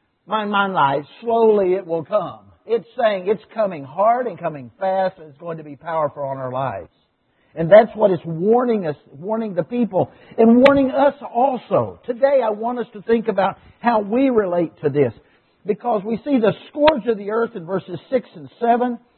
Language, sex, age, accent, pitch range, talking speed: English, male, 60-79, American, 170-240 Hz, 195 wpm